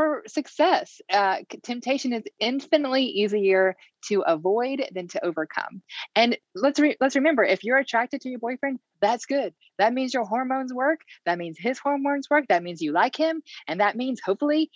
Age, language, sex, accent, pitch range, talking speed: 20-39, English, female, American, 190-275 Hz, 170 wpm